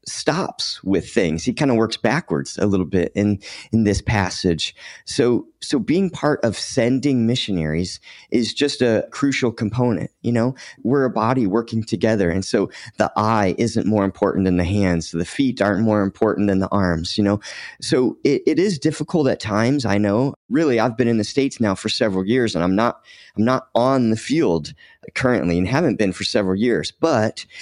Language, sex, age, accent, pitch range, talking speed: English, male, 30-49, American, 100-120 Hz, 195 wpm